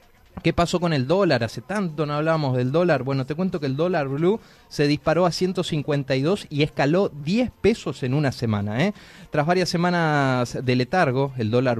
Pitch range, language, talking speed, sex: 120-165 Hz, Spanish, 185 wpm, male